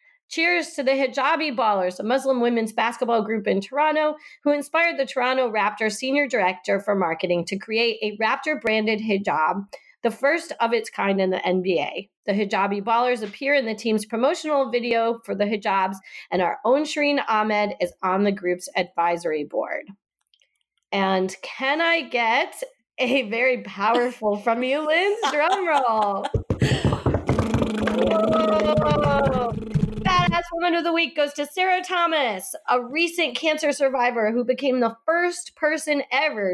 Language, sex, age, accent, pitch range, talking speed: English, female, 30-49, American, 205-290 Hz, 140 wpm